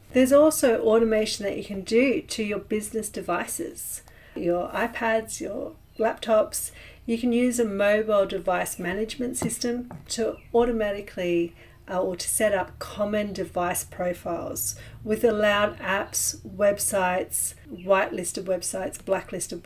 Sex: female